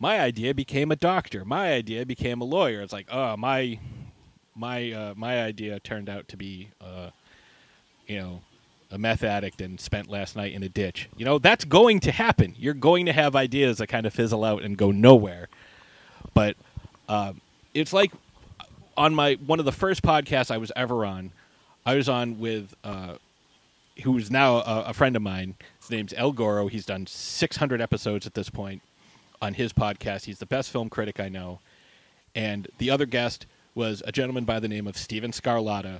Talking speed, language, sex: 195 wpm, English, male